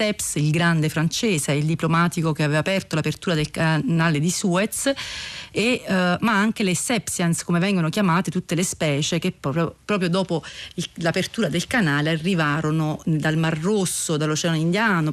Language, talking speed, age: Italian, 155 wpm, 40-59